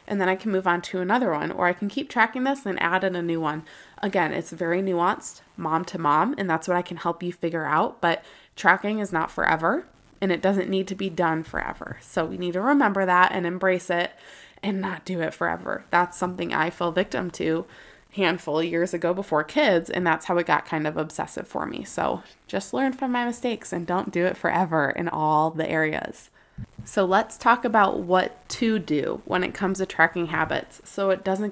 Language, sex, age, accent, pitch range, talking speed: English, female, 20-39, American, 170-200 Hz, 225 wpm